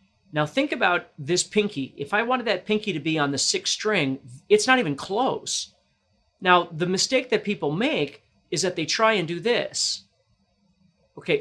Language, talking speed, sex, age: English, 180 wpm, male, 40-59